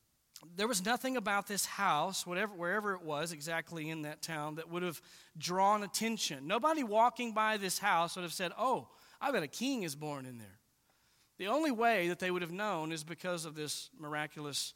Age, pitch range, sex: 40-59, 145-190 Hz, male